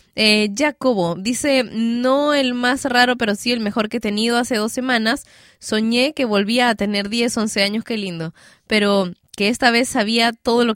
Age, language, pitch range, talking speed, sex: 20-39, Spanish, 200-245 Hz, 190 wpm, female